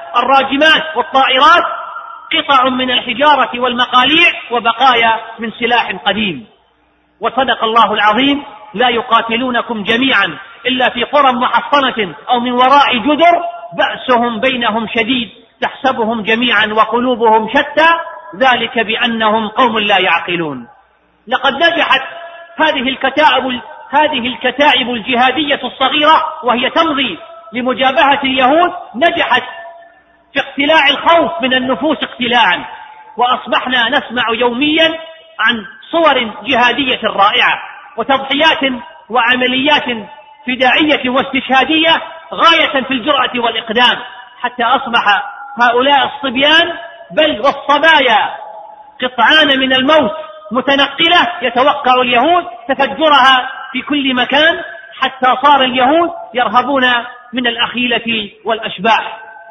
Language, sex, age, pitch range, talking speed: Arabic, male, 40-59, 235-305 Hz, 95 wpm